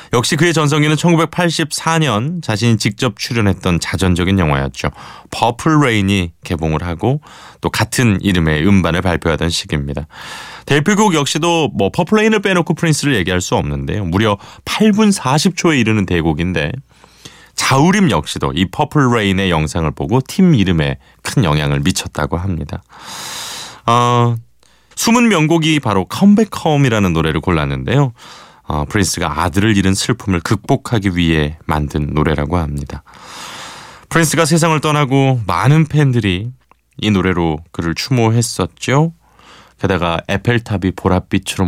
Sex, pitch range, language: male, 85-135 Hz, Korean